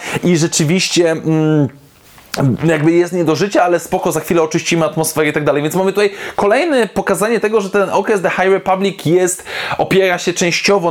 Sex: male